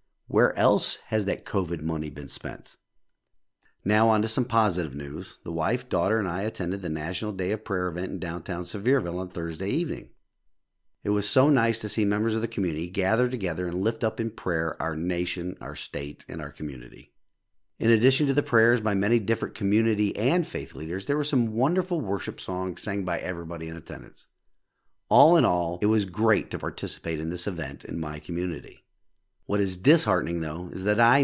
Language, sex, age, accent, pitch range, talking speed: English, male, 50-69, American, 85-110 Hz, 190 wpm